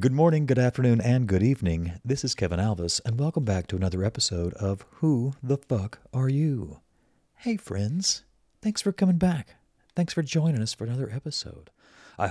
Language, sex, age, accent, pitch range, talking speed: English, male, 40-59, American, 95-135 Hz, 180 wpm